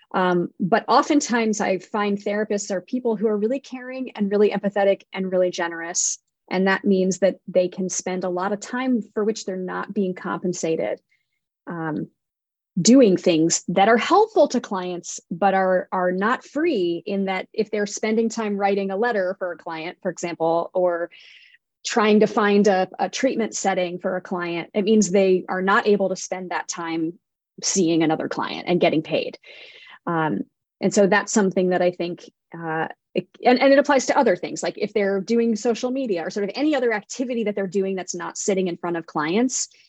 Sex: female